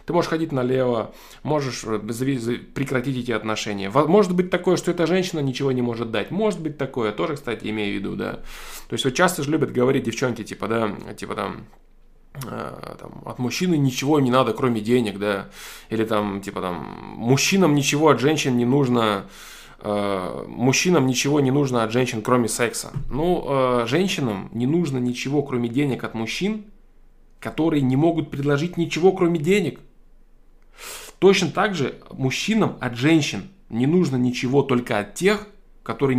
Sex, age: male, 20-39